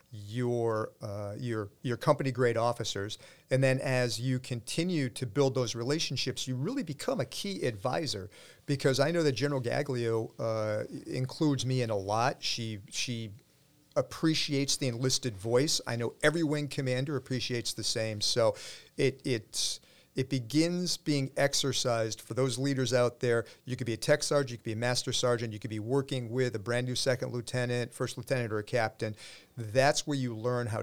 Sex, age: male, 40-59